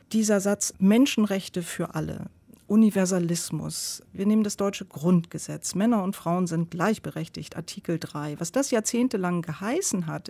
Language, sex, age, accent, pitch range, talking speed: German, female, 40-59, German, 160-195 Hz, 135 wpm